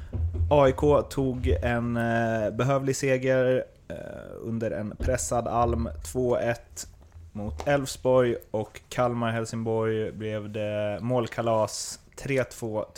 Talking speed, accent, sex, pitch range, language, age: 90 wpm, native, male, 100-120 Hz, Swedish, 20-39